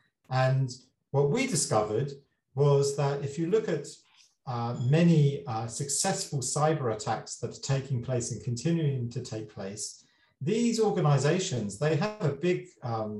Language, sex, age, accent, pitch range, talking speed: English, male, 40-59, British, 130-155 Hz, 145 wpm